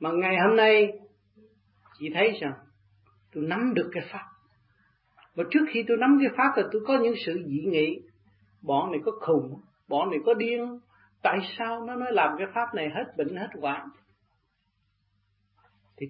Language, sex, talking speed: Vietnamese, male, 175 wpm